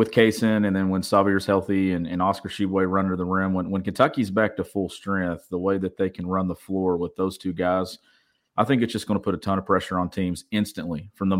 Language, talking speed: English, 265 wpm